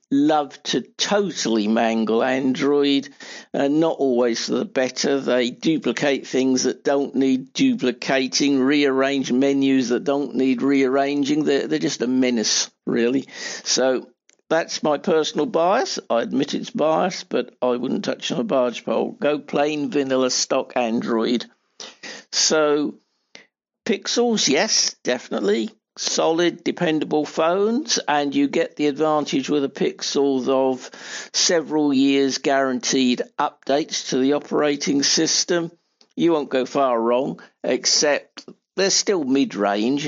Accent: British